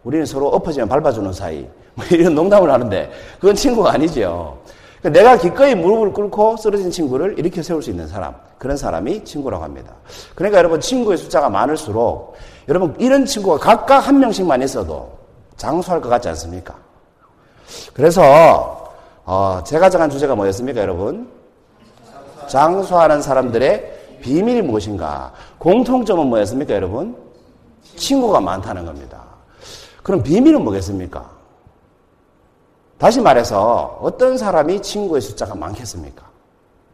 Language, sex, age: Korean, male, 40-59